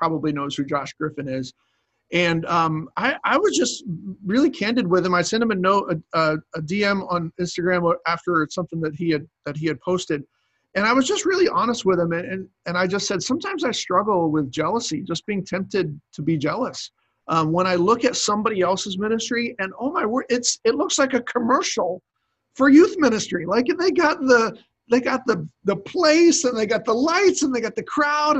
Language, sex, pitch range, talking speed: English, male, 165-225 Hz, 215 wpm